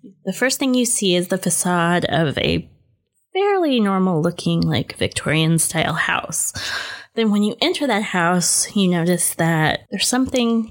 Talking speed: 145 wpm